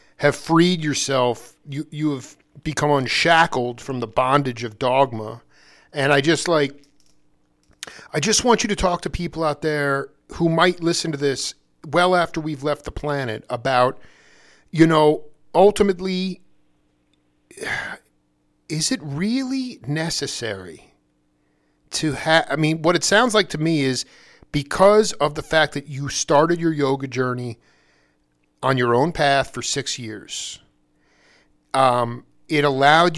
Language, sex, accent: English, male, American